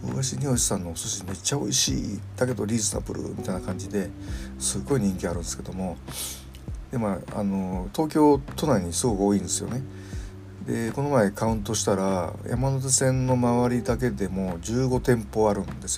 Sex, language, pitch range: male, Japanese, 90-110 Hz